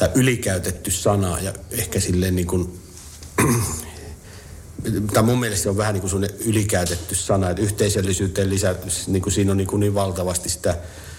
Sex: male